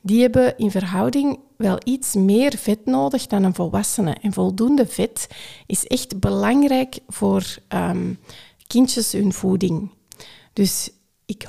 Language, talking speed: Dutch, 130 wpm